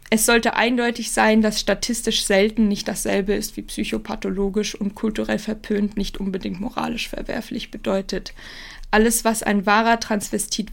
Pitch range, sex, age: 210-235 Hz, female, 20-39